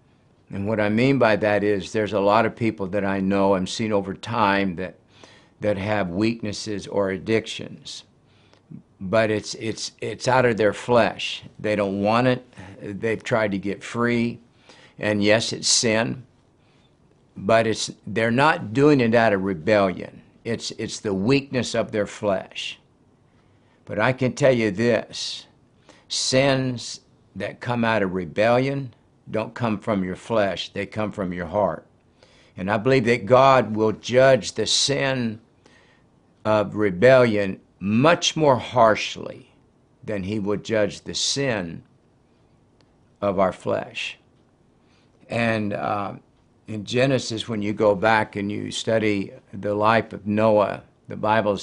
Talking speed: 145 wpm